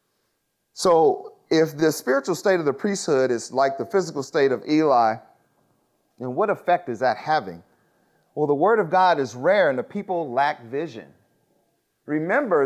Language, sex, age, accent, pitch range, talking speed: English, male, 30-49, American, 110-155 Hz, 160 wpm